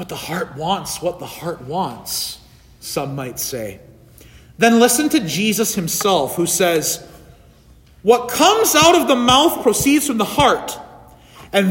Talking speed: 150 wpm